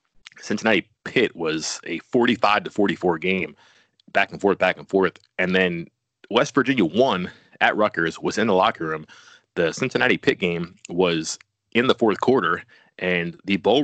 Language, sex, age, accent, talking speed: English, male, 30-49, American, 165 wpm